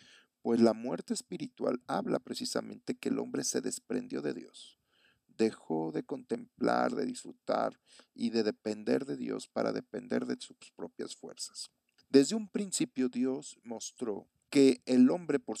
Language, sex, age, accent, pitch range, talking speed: Spanish, male, 50-69, Mexican, 105-165 Hz, 145 wpm